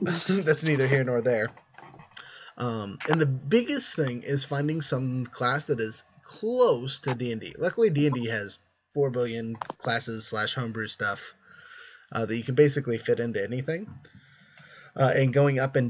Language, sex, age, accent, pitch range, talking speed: English, male, 20-39, American, 120-150 Hz, 155 wpm